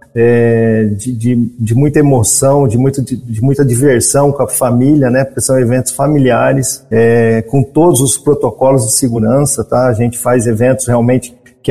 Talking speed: 145 wpm